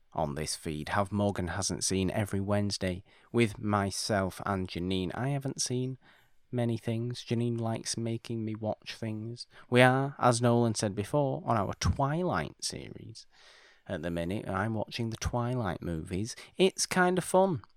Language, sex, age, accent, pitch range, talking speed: English, male, 30-49, British, 90-125 Hz, 155 wpm